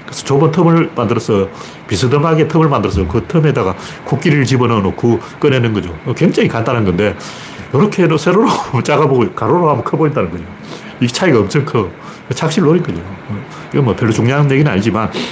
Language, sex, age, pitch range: Korean, male, 40-59, 105-145 Hz